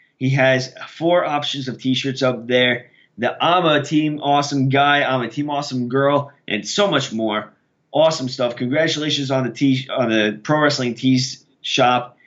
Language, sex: English, male